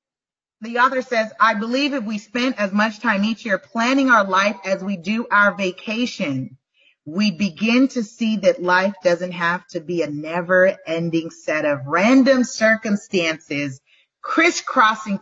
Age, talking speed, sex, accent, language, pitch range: 30-49, 155 wpm, female, American, English, 175-245 Hz